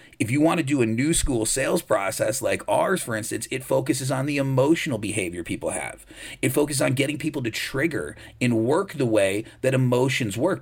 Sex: male